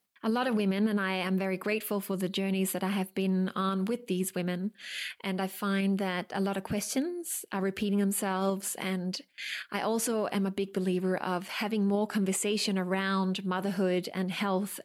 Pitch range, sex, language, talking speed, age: 190-210 Hz, female, English, 185 wpm, 20-39